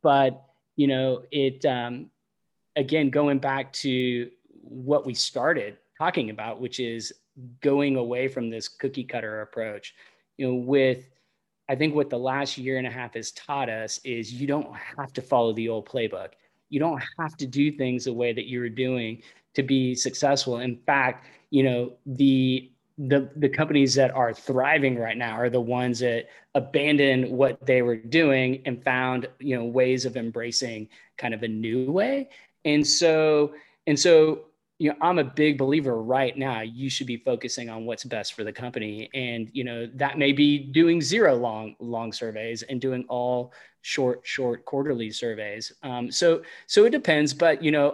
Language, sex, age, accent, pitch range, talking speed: English, male, 20-39, American, 120-145 Hz, 180 wpm